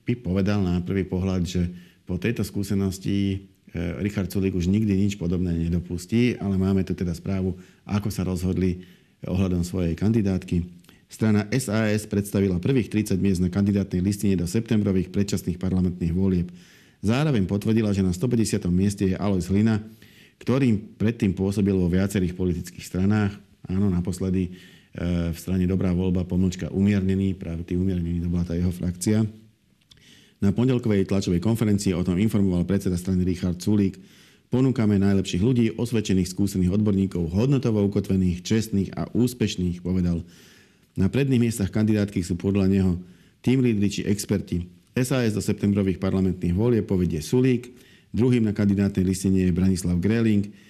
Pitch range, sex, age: 90-105 Hz, male, 50-69